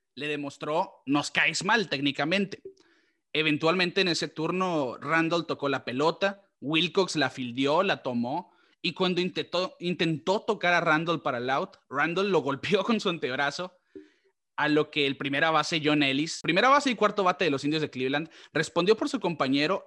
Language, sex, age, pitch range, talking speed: Spanish, male, 30-49, 140-180 Hz, 170 wpm